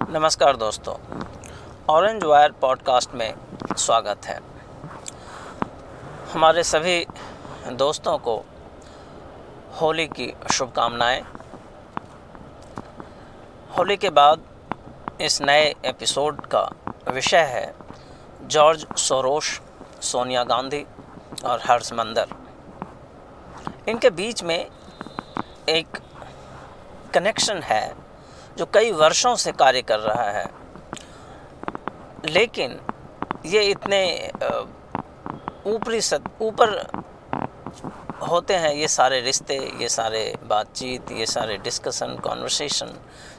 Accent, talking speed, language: native, 85 wpm, Hindi